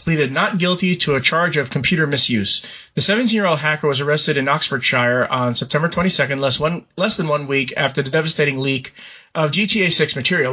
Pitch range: 150-180 Hz